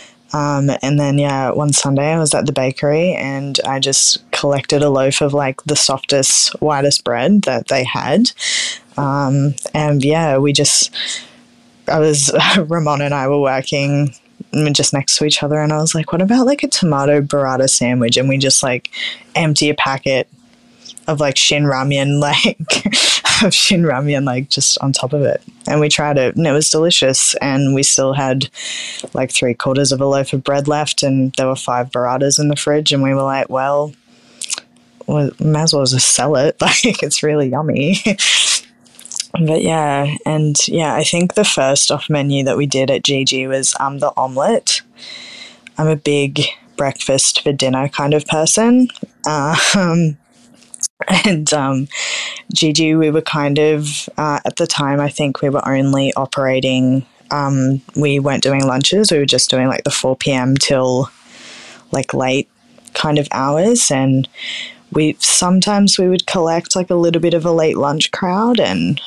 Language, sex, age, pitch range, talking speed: English, female, 10-29, 135-155 Hz, 175 wpm